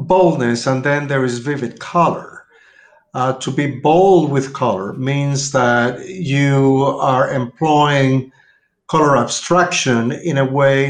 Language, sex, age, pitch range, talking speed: English, male, 50-69, 135-170 Hz, 125 wpm